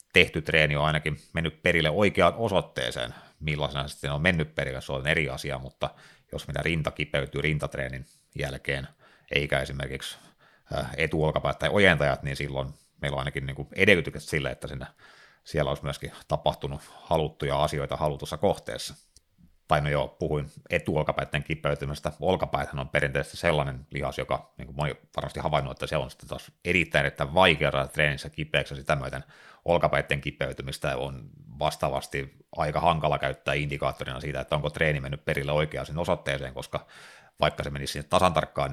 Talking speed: 145 wpm